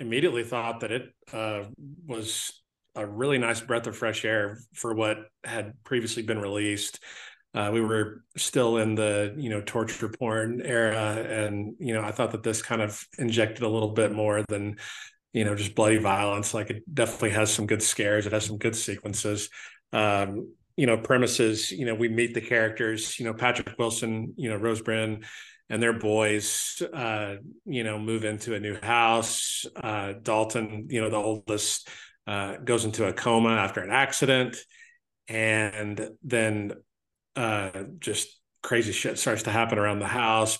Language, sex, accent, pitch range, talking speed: English, male, American, 105-120 Hz, 175 wpm